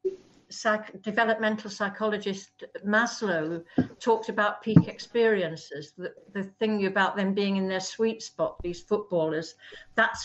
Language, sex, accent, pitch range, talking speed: English, female, British, 170-210 Hz, 125 wpm